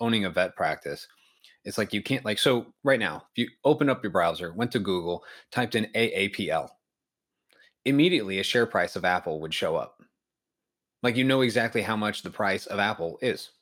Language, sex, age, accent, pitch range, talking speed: English, male, 30-49, American, 100-120 Hz, 195 wpm